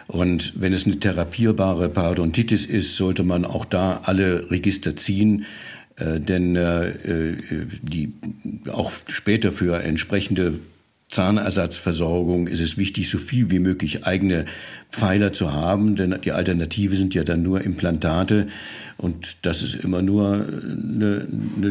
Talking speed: 135 wpm